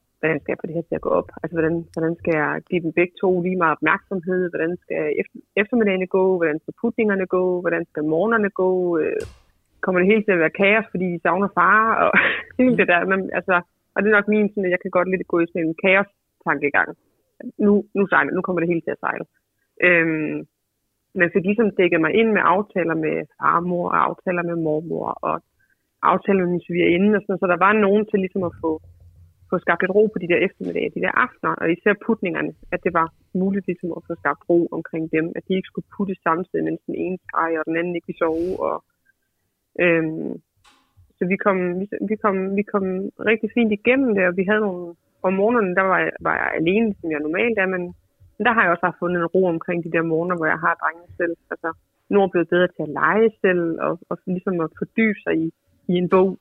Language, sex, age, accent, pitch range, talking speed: Danish, female, 30-49, native, 165-200 Hz, 230 wpm